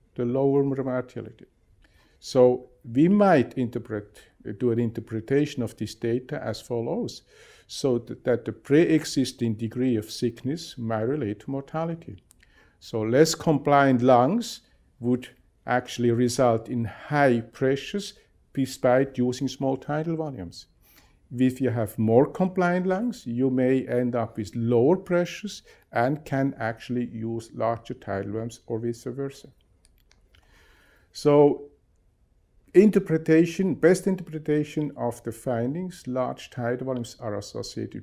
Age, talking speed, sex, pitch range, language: 50-69, 120 wpm, male, 115-150 Hz, English